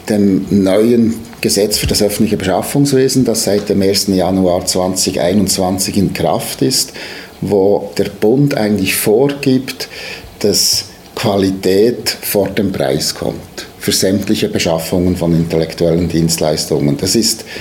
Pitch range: 90-110 Hz